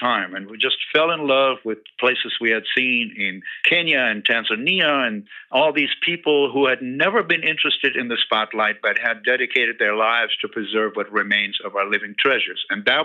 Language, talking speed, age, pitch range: English, 200 wpm, 60-79, 115-135 Hz